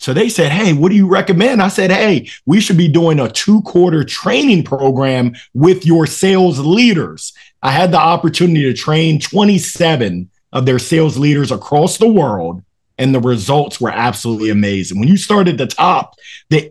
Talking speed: 175 wpm